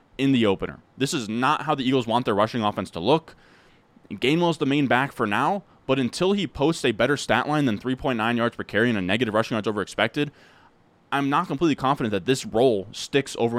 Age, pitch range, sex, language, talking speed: 20-39, 110-140 Hz, male, English, 220 wpm